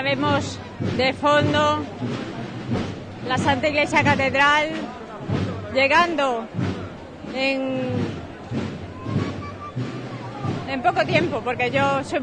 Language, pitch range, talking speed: Spanish, 265-300 Hz, 80 wpm